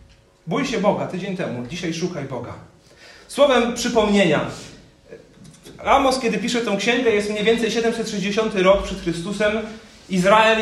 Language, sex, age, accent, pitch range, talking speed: Polish, male, 40-59, native, 180-225 Hz, 130 wpm